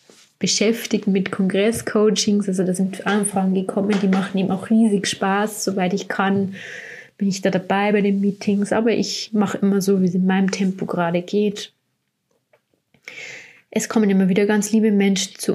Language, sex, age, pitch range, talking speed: German, female, 20-39, 185-210 Hz, 170 wpm